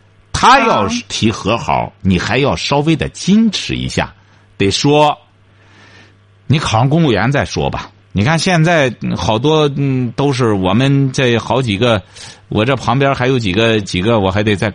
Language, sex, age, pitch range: Chinese, male, 60-79, 95-140 Hz